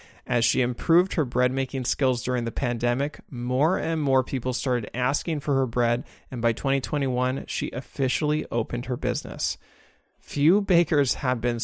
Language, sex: English, male